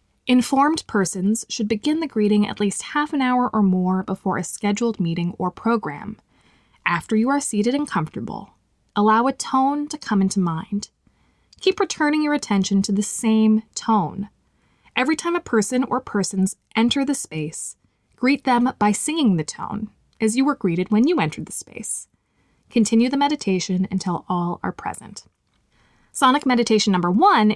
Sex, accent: female, American